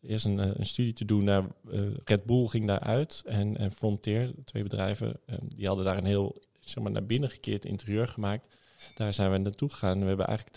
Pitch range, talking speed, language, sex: 95-115 Hz, 205 wpm, Dutch, male